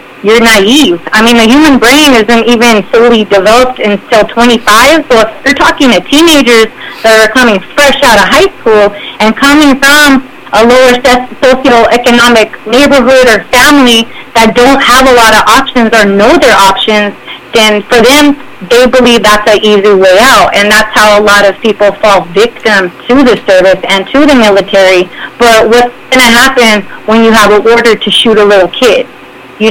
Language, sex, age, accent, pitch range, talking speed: English, female, 30-49, American, 205-250 Hz, 180 wpm